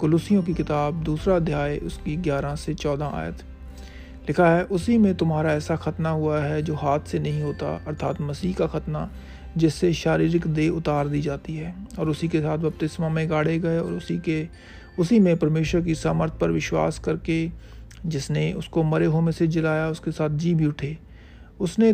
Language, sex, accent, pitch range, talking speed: Hindi, male, native, 150-165 Hz, 180 wpm